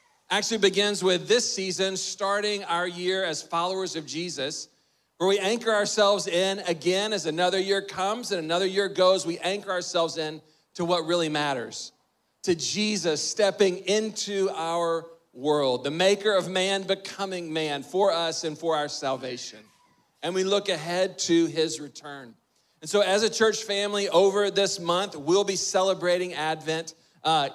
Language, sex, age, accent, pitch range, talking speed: English, male, 40-59, American, 155-195 Hz, 160 wpm